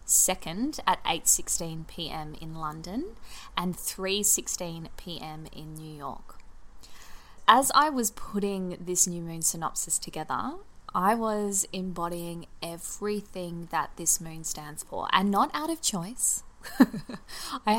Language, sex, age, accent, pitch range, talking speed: English, female, 20-39, Australian, 170-210 Hz, 120 wpm